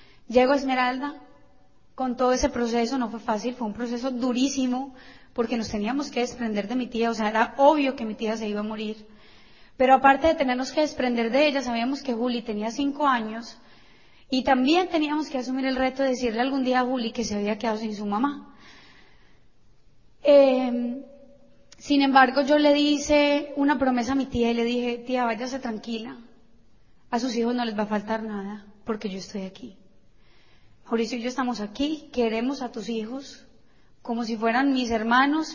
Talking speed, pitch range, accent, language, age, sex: 185 wpm, 225-270 Hz, Colombian, Spanish, 20-39, female